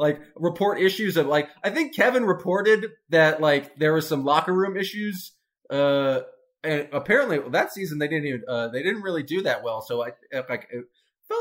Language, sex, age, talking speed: English, male, 20-39, 195 wpm